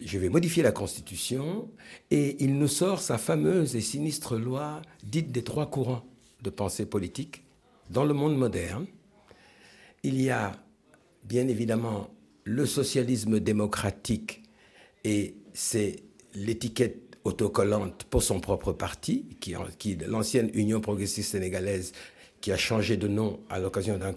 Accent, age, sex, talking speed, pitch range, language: French, 60-79, male, 130 wpm, 95-130 Hz, French